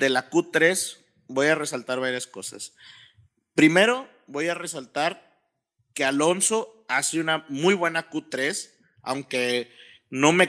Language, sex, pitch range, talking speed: Spanish, male, 150-195 Hz, 125 wpm